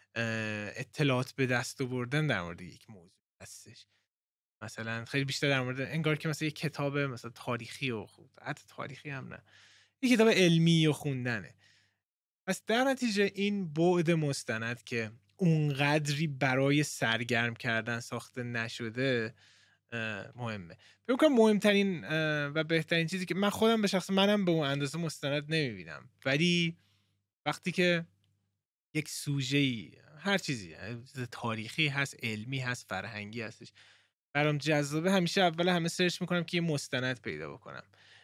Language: Persian